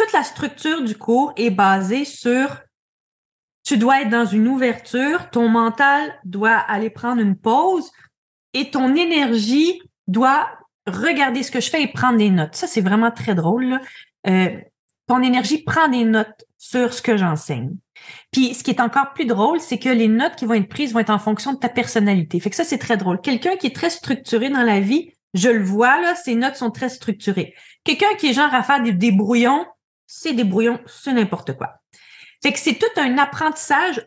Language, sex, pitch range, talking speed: French, female, 215-280 Hz, 200 wpm